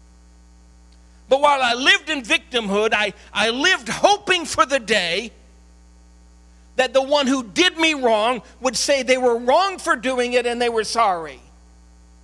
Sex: male